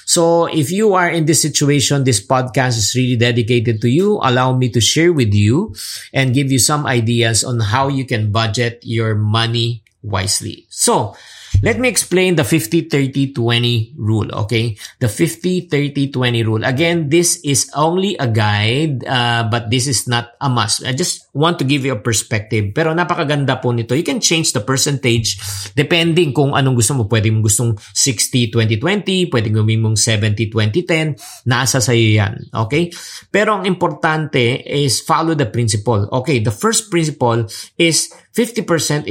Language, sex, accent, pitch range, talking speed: English, male, Filipino, 115-145 Hz, 160 wpm